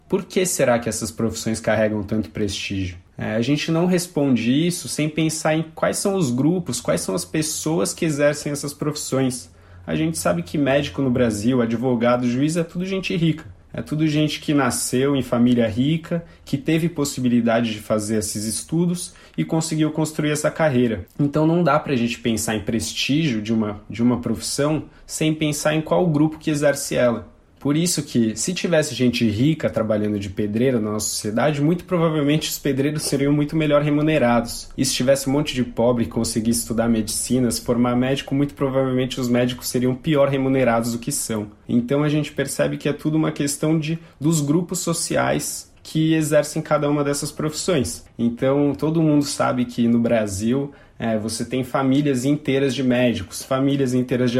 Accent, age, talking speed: Brazilian, 20-39, 180 wpm